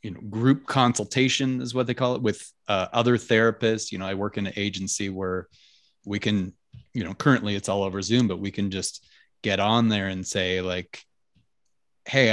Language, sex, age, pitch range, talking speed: English, male, 30-49, 105-140 Hz, 200 wpm